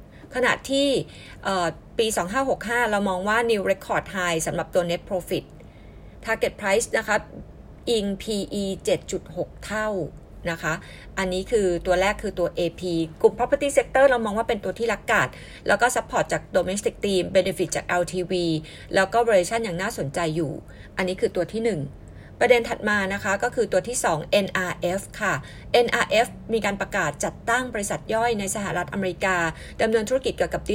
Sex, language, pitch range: female, Thai, 175-225 Hz